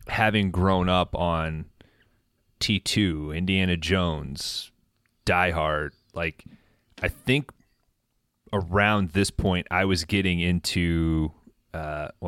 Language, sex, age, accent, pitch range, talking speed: English, male, 30-49, American, 85-105 Hz, 100 wpm